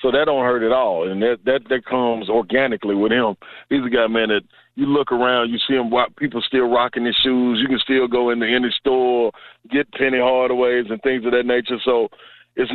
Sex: male